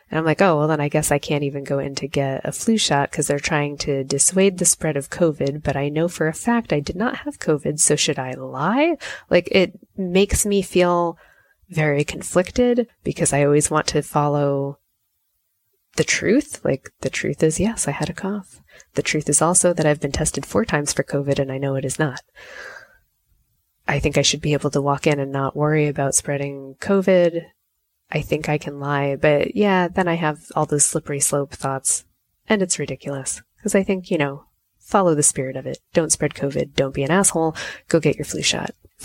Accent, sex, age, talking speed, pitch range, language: American, female, 20-39, 215 wpm, 140-175 Hz, English